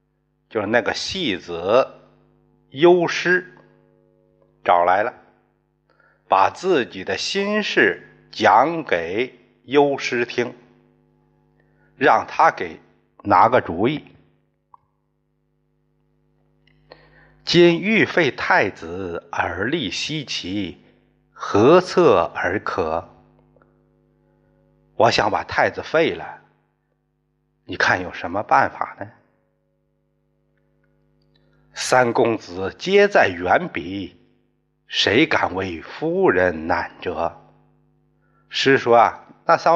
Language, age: Chinese, 60-79